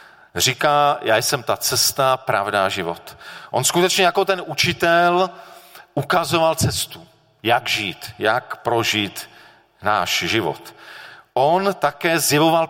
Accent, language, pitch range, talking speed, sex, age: native, Czech, 115-165 Hz, 110 wpm, male, 40-59